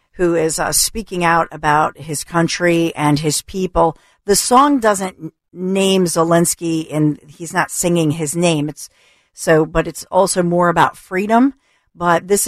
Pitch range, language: 155-180 Hz, English